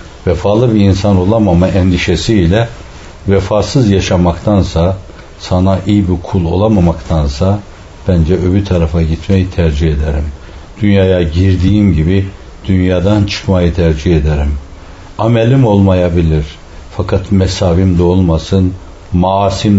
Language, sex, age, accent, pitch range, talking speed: Turkish, male, 60-79, native, 80-100 Hz, 95 wpm